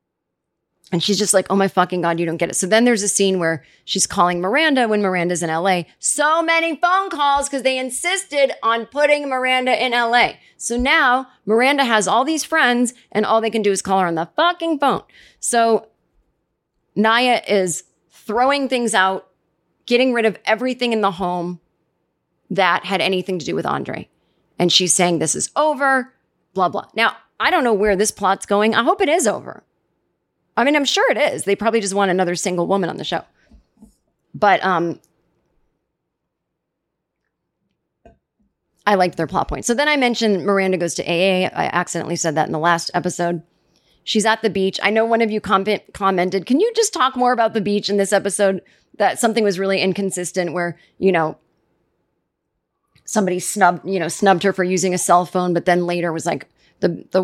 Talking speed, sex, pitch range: 195 wpm, female, 180-245 Hz